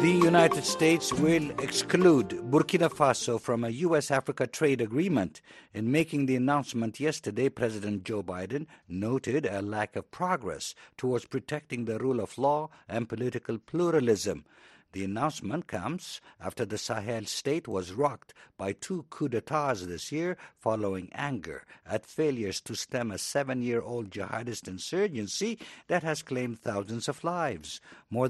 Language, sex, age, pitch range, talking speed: English, male, 60-79, 105-155 Hz, 140 wpm